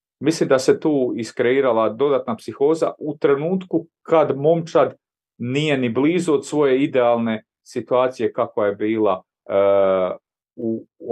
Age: 40-59